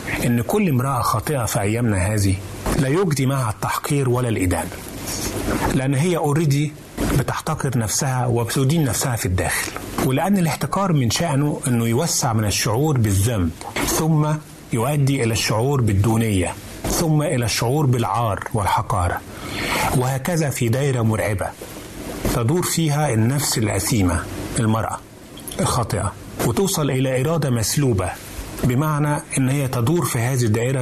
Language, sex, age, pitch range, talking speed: Arabic, male, 30-49, 105-145 Hz, 120 wpm